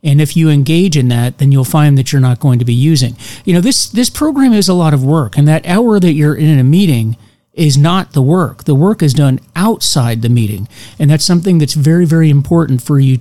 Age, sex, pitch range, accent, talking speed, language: 40-59, male, 130-170 Hz, American, 245 wpm, English